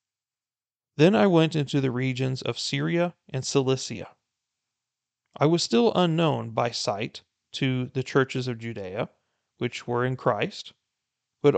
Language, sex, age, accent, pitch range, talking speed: English, male, 40-59, American, 115-145 Hz, 135 wpm